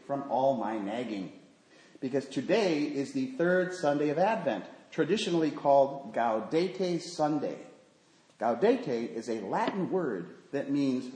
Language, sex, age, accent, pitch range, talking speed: English, male, 40-59, American, 135-175 Hz, 125 wpm